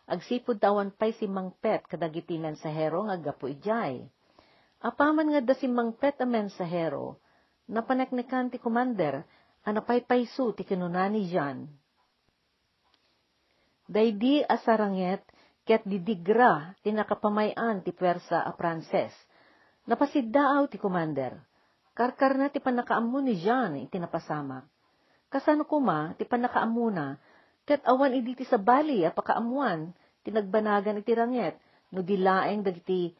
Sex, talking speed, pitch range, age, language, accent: female, 115 wpm, 175-245 Hz, 50-69, Filipino, native